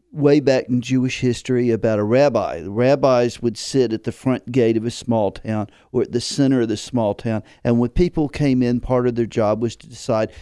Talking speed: 230 wpm